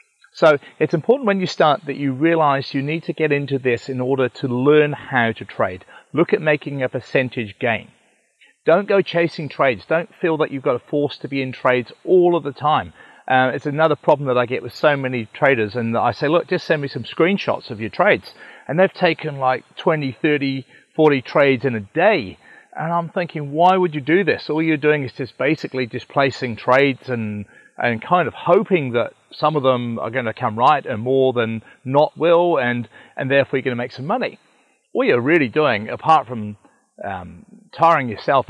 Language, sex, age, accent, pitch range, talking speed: English, male, 40-59, British, 125-155 Hz, 210 wpm